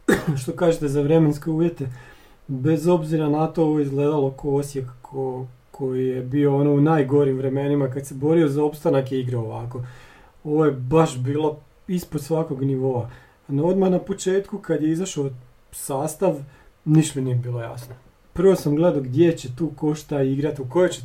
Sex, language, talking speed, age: male, Croatian, 165 wpm, 40-59